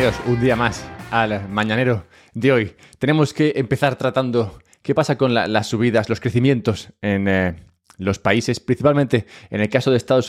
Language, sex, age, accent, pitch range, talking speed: English, male, 20-39, Spanish, 95-130 Hz, 165 wpm